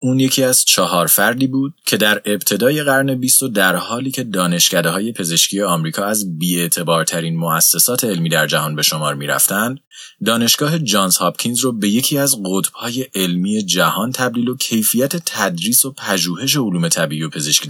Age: 30-49